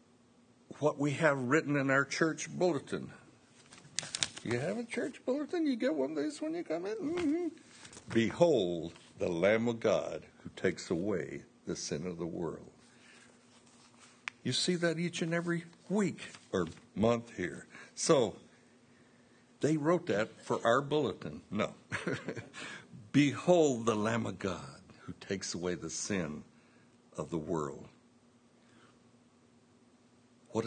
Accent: American